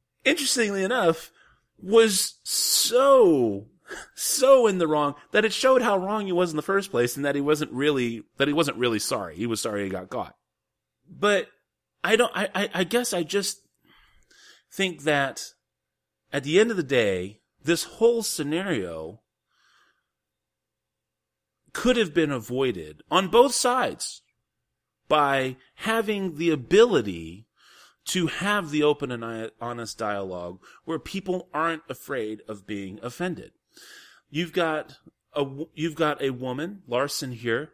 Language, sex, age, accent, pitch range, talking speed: English, male, 30-49, American, 125-205 Hz, 140 wpm